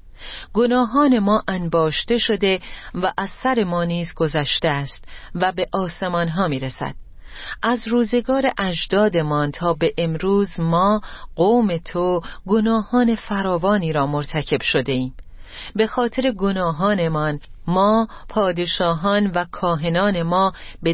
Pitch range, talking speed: 165-210 Hz, 110 wpm